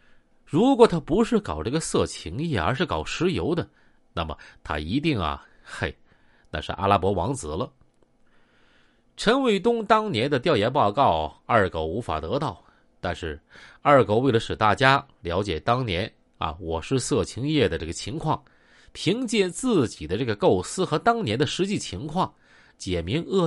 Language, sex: Chinese, male